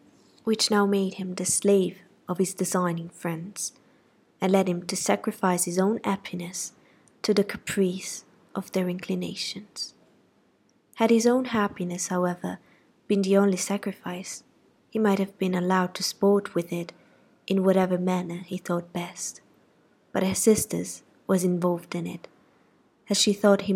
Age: 20-39